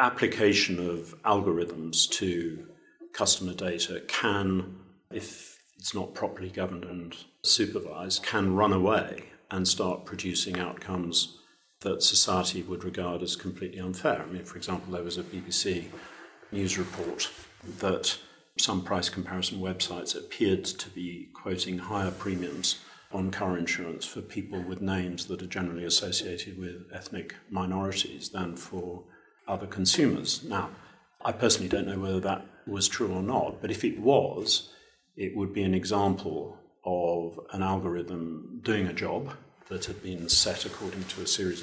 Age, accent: 50-69, British